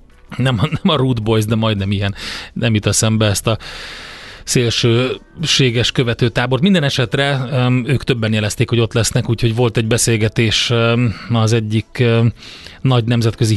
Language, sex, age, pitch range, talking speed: Hungarian, male, 30-49, 105-120 Hz, 135 wpm